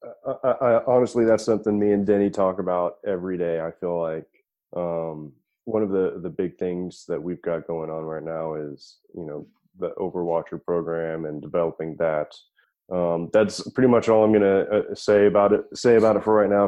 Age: 20-39